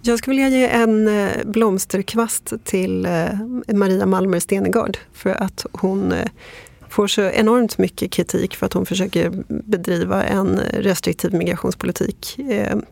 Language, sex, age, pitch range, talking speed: Swedish, female, 30-49, 185-220 Hz, 120 wpm